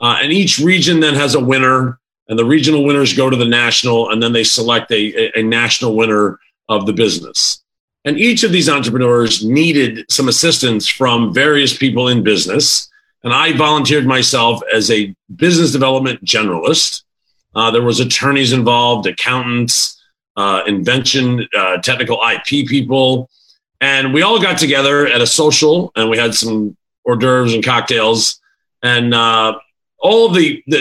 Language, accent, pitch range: English, American, 115-145 Hz